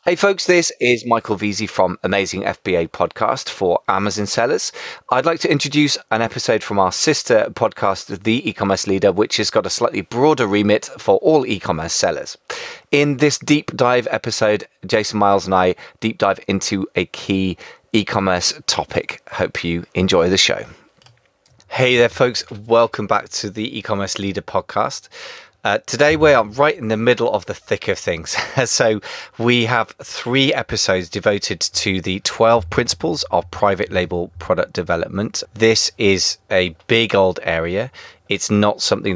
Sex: male